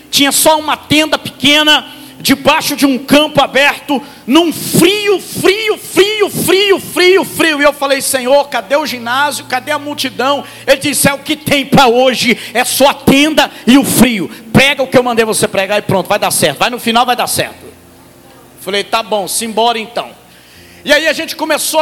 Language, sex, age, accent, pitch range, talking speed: Portuguese, male, 50-69, Brazilian, 250-295 Hz, 195 wpm